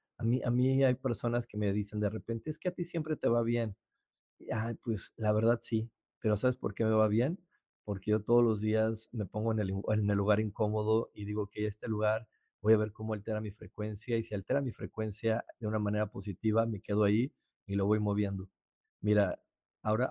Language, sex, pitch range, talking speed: Spanish, male, 105-120 Hz, 225 wpm